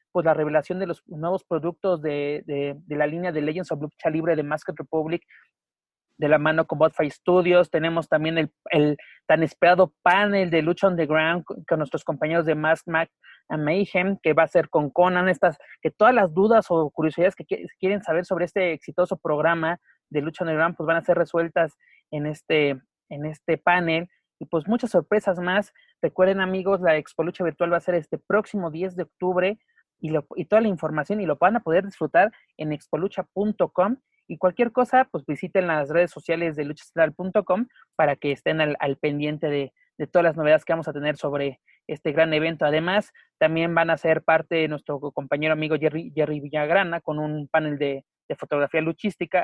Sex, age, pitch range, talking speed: male, 30-49, 155-185 Hz, 195 wpm